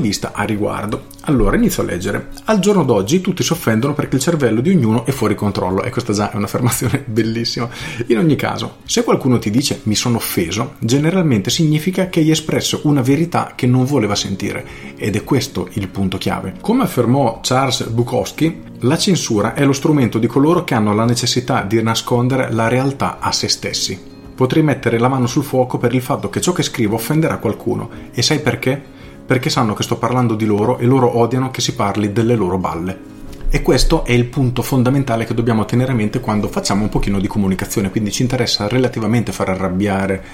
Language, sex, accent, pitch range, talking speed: Italian, male, native, 105-135 Hz, 200 wpm